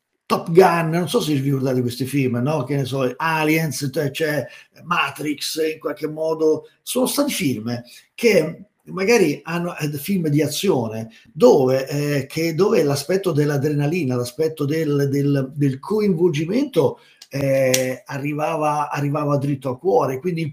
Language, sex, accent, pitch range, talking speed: Italian, male, native, 130-170 Hz, 135 wpm